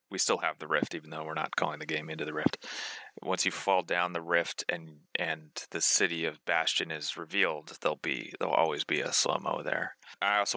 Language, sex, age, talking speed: English, male, 30-49, 225 wpm